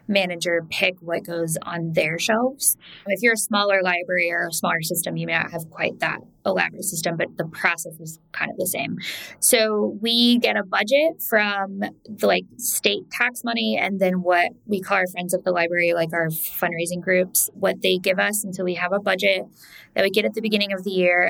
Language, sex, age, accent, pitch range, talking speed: English, female, 10-29, American, 175-210 Hz, 210 wpm